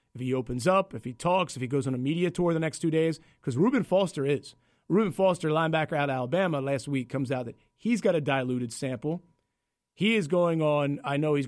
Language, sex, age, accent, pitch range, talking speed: English, male, 30-49, American, 130-160 Hz, 235 wpm